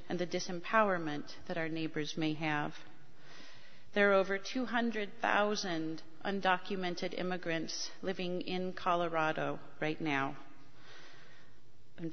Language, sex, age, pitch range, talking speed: English, female, 40-59, 160-195 Hz, 100 wpm